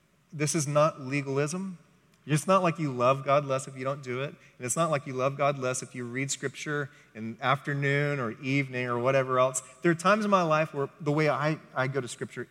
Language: English